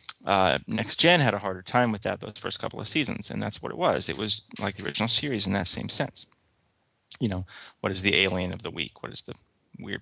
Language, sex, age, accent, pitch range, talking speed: English, male, 30-49, American, 95-120 Hz, 250 wpm